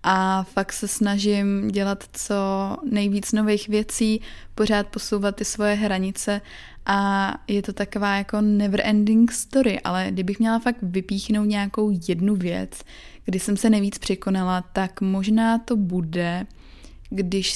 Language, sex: Czech, female